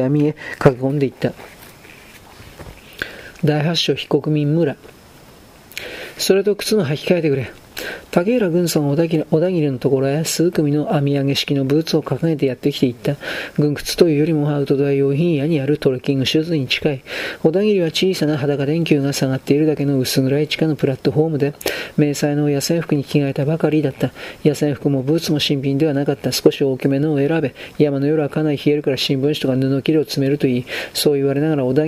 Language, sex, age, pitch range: Japanese, male, 40-59, 140-155 Hz